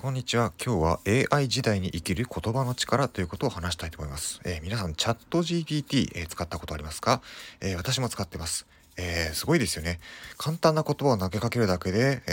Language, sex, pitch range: Japanese, male, 90-140 Hz